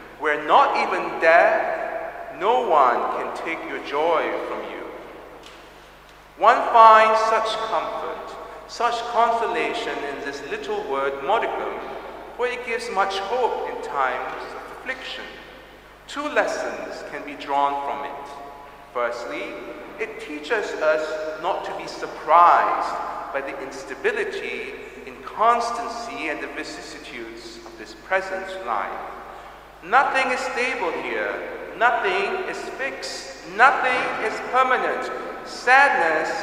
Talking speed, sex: 115 wpm, male